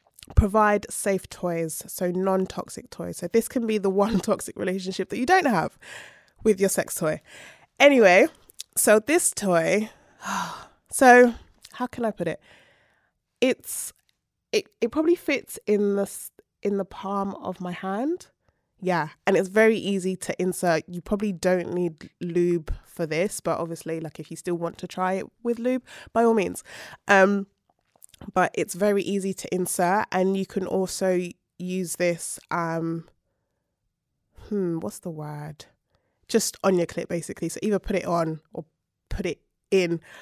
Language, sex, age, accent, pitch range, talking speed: English, female, 20-39, British, 180-230 Hz, 160 wpm